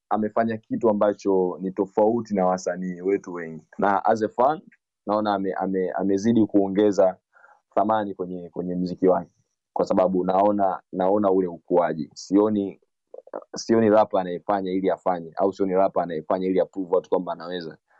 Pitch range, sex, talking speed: 90-105 Hz, male, 135 wpm